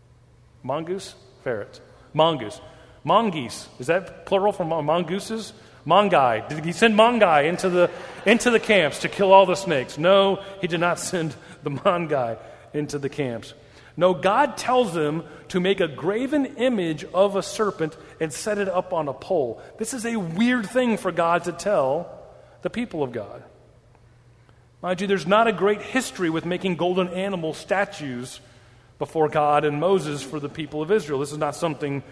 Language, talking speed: English, 170 wpm